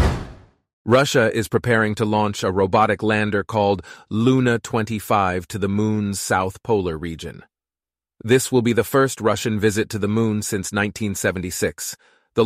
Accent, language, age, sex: American, English, 30-49, male